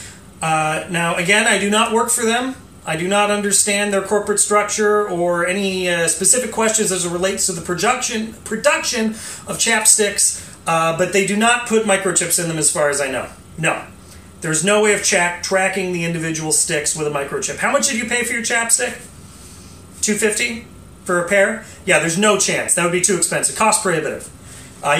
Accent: American